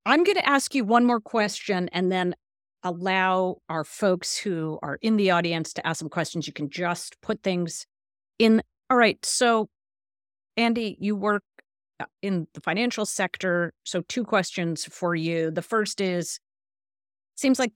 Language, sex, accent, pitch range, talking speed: English, female, American, 160-205 Hz, 160 wpm